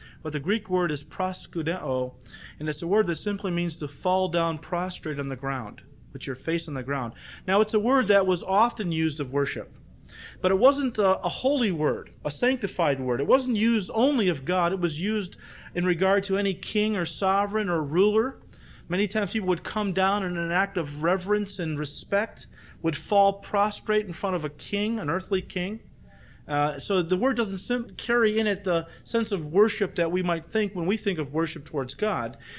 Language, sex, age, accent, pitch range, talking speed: English, male, 40-59, American, 150-200 Hz, 205 wpm